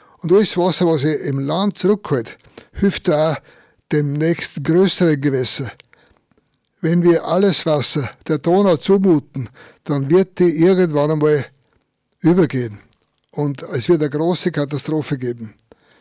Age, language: 60-79, German